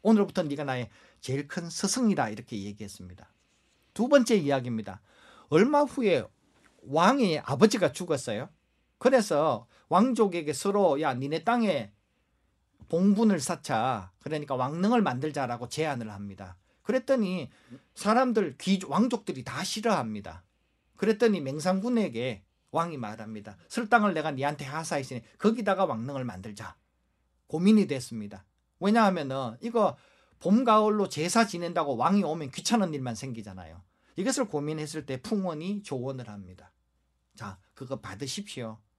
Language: Korean